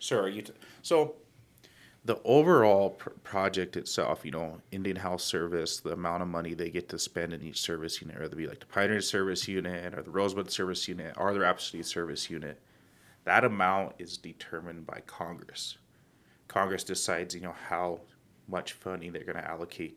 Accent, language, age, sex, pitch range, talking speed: American, English, 30-49, male, 85-95 Hz, 185 wpm